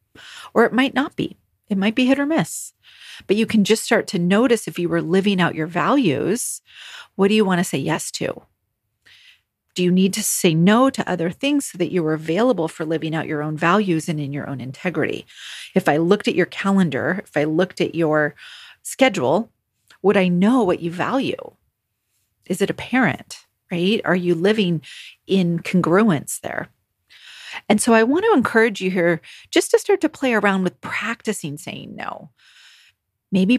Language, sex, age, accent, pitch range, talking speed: English, female, 40-59, American, 160-210 Hz, 190 wpm